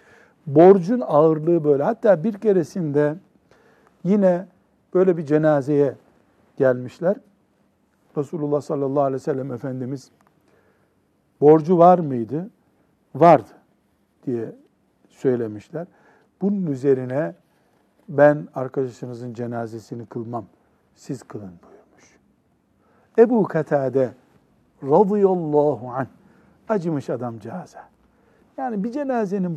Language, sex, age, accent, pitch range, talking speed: Turkish, male, 60-79, native, 130-190 Hz, 85 wpm